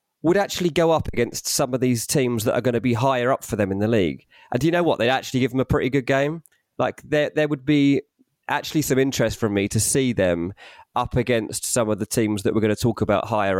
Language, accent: English, British